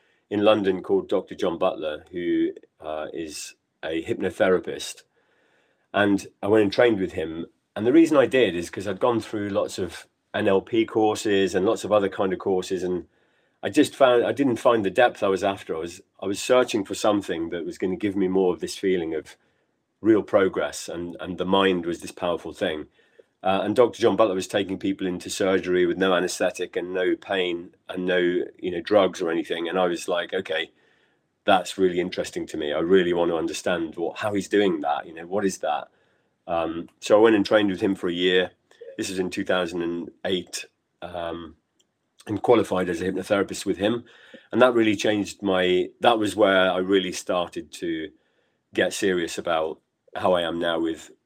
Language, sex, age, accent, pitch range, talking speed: English, male, 30-49, British, 90-105 Hz, 200 wpm